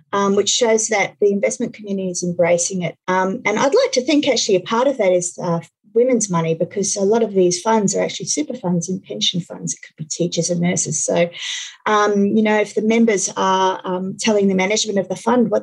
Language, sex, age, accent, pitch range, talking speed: English, female, 40-59, Australian, 180-225 Hz, 230 wpm